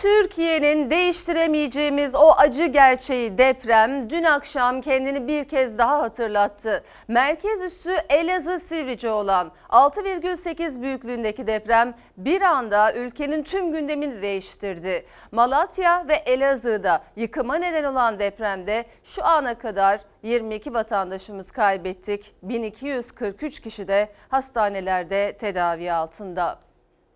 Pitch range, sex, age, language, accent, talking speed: 215-300 Hz, female, 40-59, Turkish, native, 100 wpm